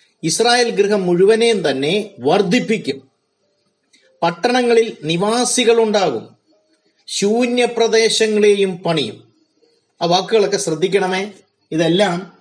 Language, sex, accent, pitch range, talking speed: Malayalam, male, native, 170-215 Hz, 65 wpm